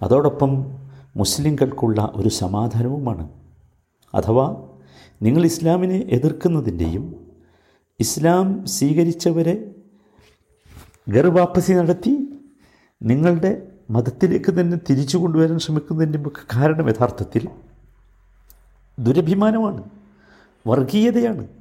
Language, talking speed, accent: Malayalam, 60 wpm, native